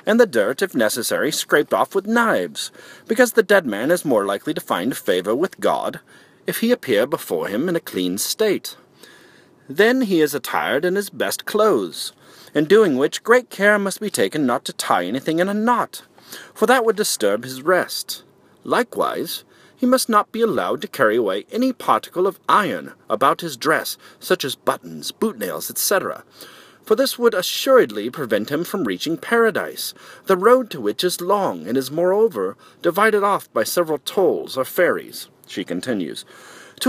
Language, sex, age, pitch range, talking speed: English, male, 40-59, 175-245 Hz, 175 wpm